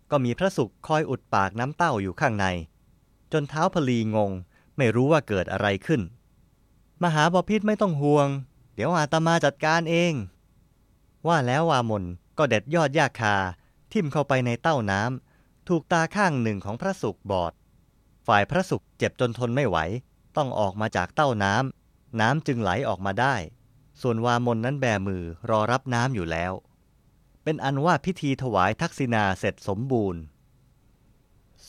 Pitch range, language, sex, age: 105-155 Hz, Thai, male, 20-39